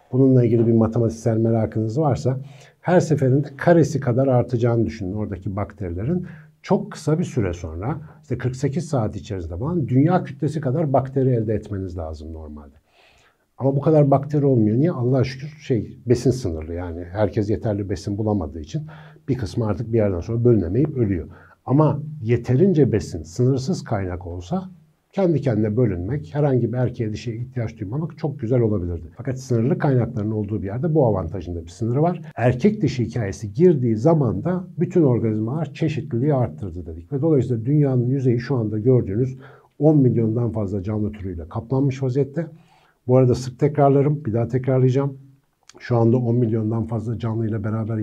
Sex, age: male, 60-79